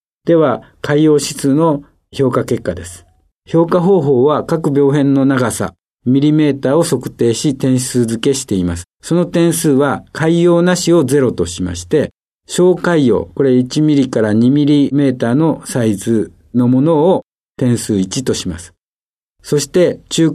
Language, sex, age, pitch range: Japanese, male, 50-69, 110-155 Hz